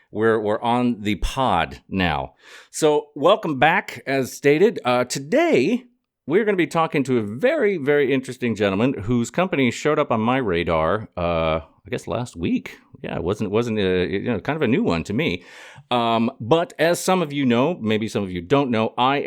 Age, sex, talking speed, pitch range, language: 40-59, male, 200 wpm, 90-125 Hz, English